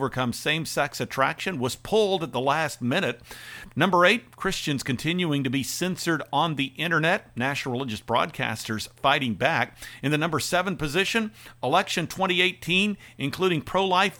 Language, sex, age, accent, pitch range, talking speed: English, male, 50-69, American, 130-165 Hz, 140 wpm